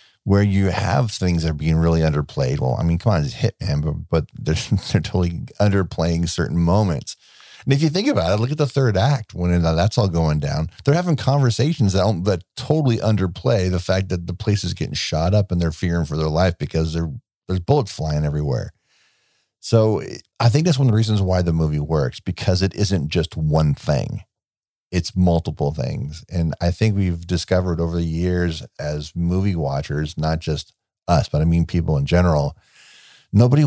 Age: 50-69